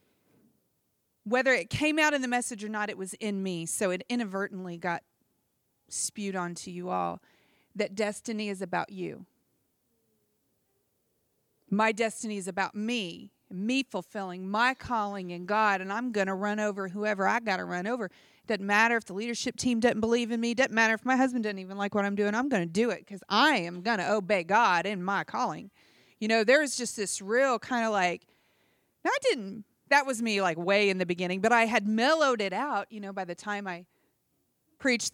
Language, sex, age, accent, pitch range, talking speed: English, female, 40-59, American, 190-235 Hz, 195 wpm